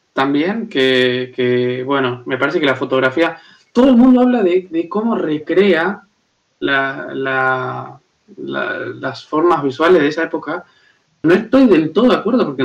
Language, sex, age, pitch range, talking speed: Spanish, male, 20-39, 140-185 Hz, 155 wpm